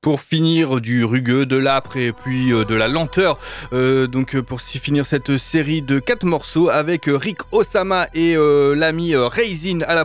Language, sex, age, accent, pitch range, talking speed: French, male, 20-39, French, 130-155 Hz, 190 wpm